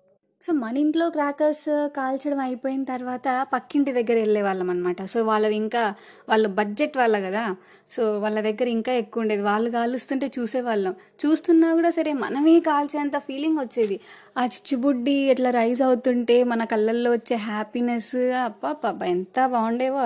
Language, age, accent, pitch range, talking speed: Telugu, 20-39, native, 215-275 Hz, 140 wpm